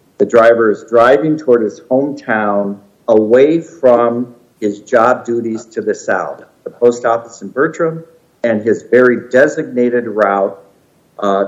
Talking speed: 135 wpm